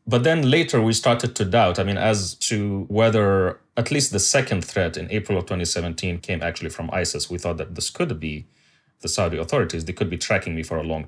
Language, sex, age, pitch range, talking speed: English, male, 30-49, 90-115 Hz, 225 wpm